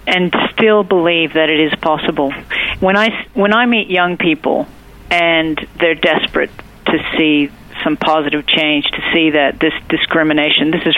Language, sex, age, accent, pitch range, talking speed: English, female, 50-69, American, 150-185 Hz, 160 wpm